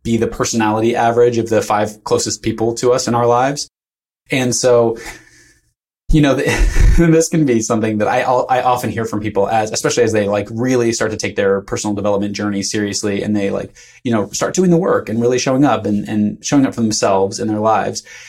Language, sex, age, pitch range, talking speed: English, male, 20-39, 105-125 Hz, 215 wpm